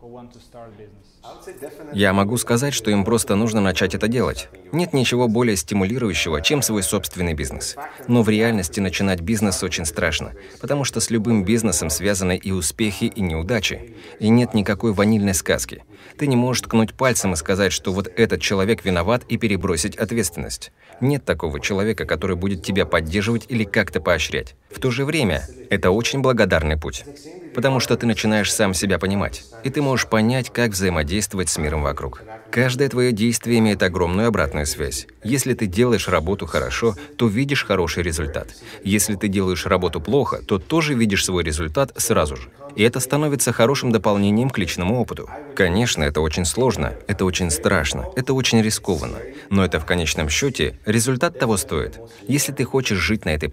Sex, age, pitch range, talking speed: male, 30-49, 95-120 Hz, 165 wpm